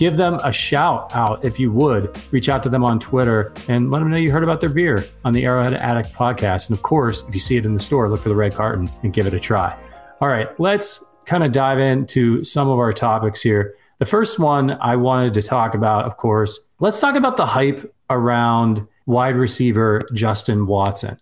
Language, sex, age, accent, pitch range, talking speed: English, male, 30-49, American, 115-160 Hz, 225 wpm